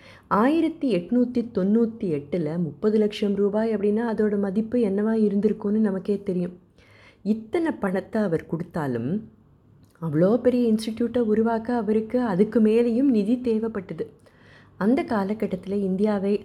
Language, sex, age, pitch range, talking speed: Tamil, female, 30-49, 175-225 Hz, 110 wpm